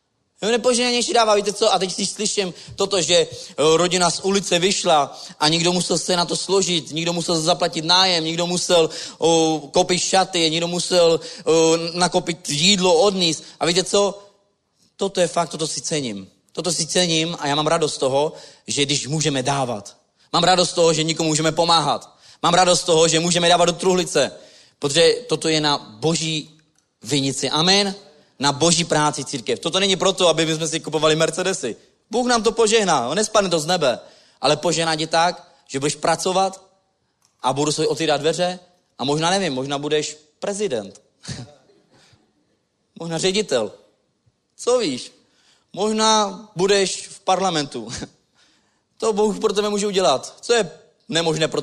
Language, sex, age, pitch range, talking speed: Czech, male, 30-49, 160-195 Hz, 160 wpm